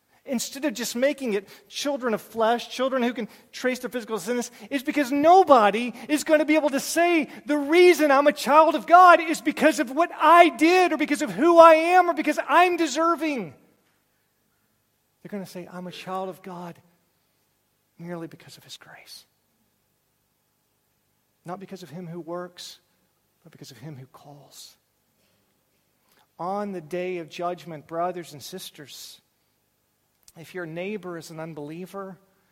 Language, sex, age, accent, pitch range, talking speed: English, male, 40-59, American, 170-240 Hz, 160 wpm